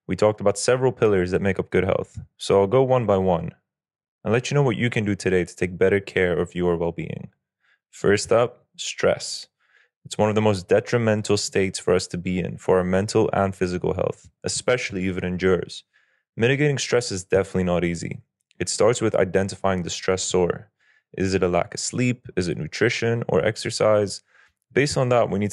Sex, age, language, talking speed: male, 20-39, English, 200 wpm